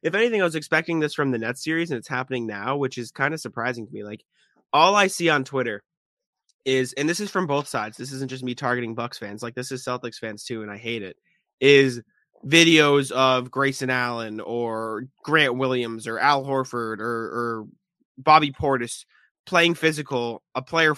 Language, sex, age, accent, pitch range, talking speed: English, male, 20-39, American, 125-155 Hz, 200 wpm